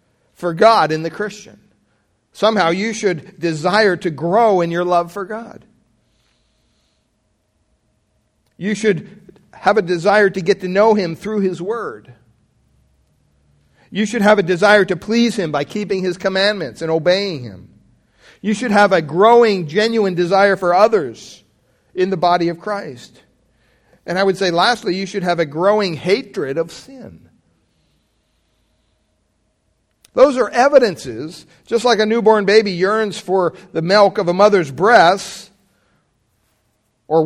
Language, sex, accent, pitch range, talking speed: English, male, American, 130-205 Hz, 140 wpm